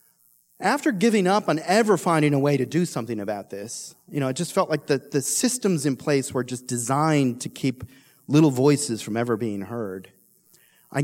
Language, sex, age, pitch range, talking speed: English, male, 40-59, 135-175 Hz, 195 wpm